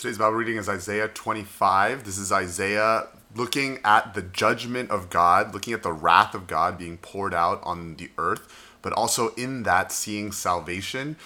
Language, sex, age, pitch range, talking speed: English, male, 30-49, 85-105 Hz, 175 wpm